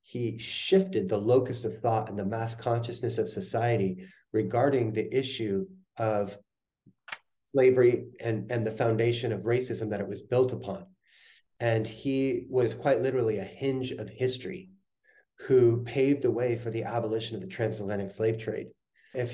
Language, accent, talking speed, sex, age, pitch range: English, American, 155 wpm, male, 30-49, 110-130 Hz